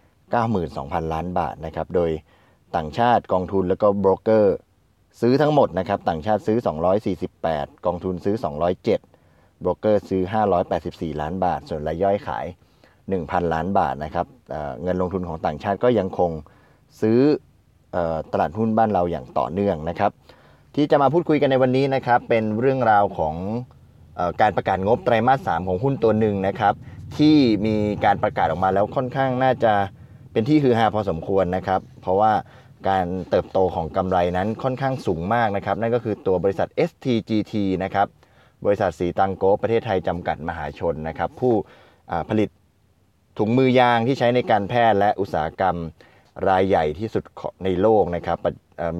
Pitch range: 90-115 Hz